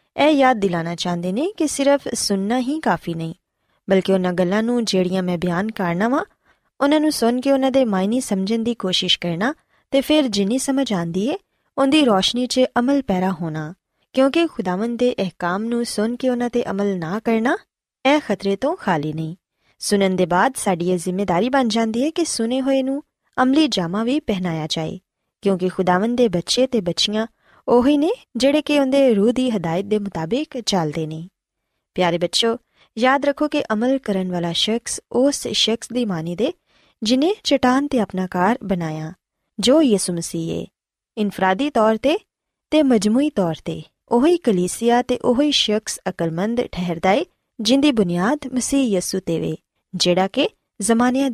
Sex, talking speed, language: female, 165 wpm, Punjabi